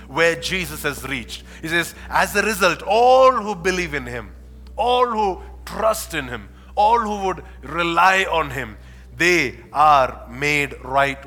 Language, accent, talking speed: English, Indian, 155 wpm